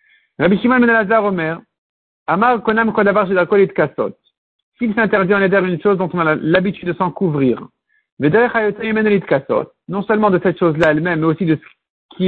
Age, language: 50-69, French